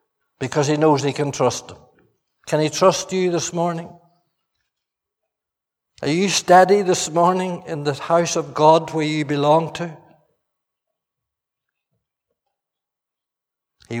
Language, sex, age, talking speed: English, male, 60-79, 120 wpm